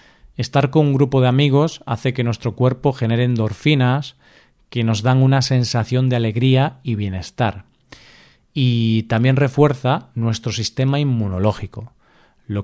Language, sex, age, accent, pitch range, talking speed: Spanish, male, 40-59, Spanish, 115-145 Hz, 135 wpm